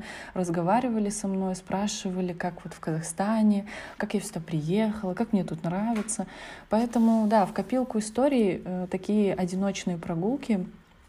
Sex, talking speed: female, 130 wpm